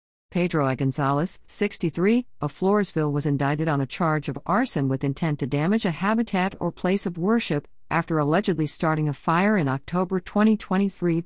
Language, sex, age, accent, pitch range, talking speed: English, female, 50-69, American, 145-195 Hz, 165 wpm